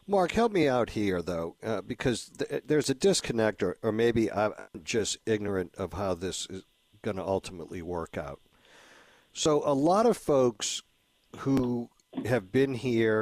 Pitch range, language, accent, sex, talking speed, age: 100-130 Hz, English, American, male, 165 wpm, 50-69